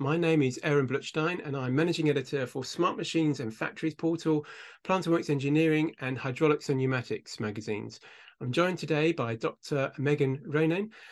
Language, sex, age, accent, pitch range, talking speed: English, male, 40-59, British, 125-155 Hz, 165 wpm